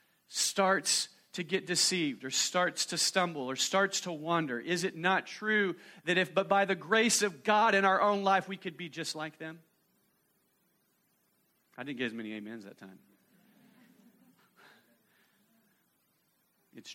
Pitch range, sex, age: 145-230 Hz, male, 40-59